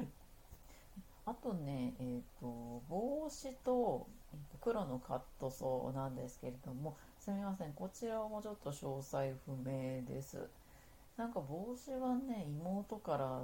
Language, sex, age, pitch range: Japanese, female, 40-59, 125-185 Hz